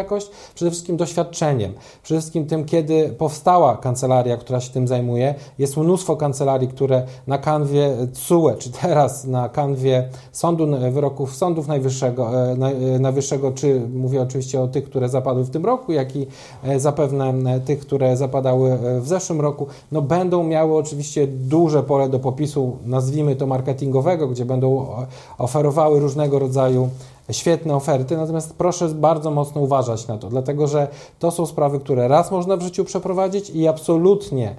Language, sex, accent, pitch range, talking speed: Polish, male, native, 130-155 Hz, 150 wpm